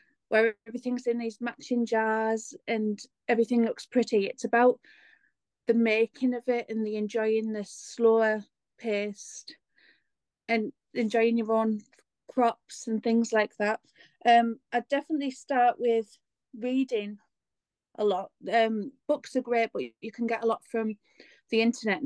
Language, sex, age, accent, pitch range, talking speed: English, female, 30-49, British, 220-250 Hz, 140 wpm